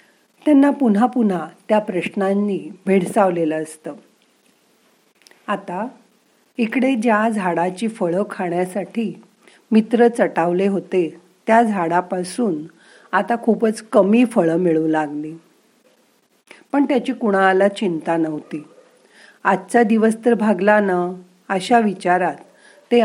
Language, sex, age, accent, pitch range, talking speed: Marathi, female, 40-59, native, 175-230 Hz, 100 wpm